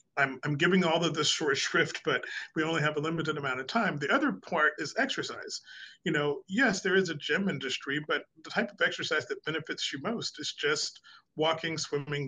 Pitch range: 130-160 Hz